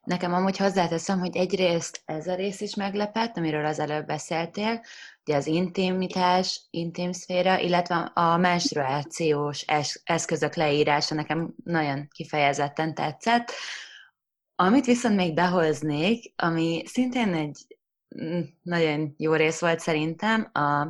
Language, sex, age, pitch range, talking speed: Hungarian, female, 20-39, 155-190 Hz, 115 wpm